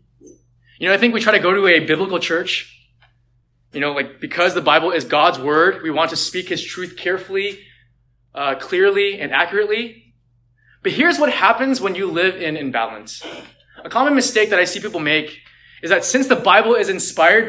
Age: 20-39